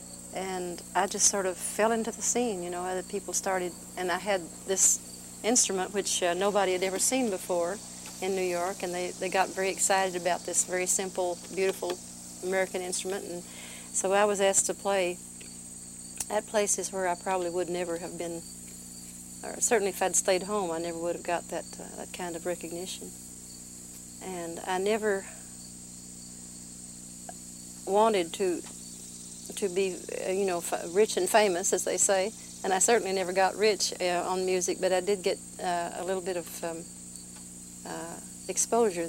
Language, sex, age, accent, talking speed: English, female, 50-69, American, 170 wpm